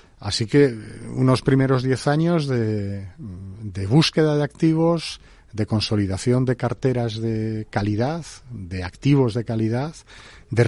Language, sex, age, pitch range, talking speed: Spanish, male, 40-59, 105-130 Hz, 125 wpm